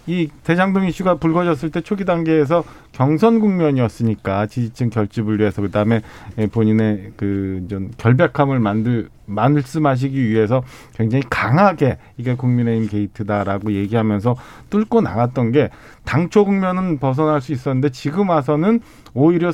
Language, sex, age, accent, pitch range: Korean, male, 40-59, native, 125-175 Hz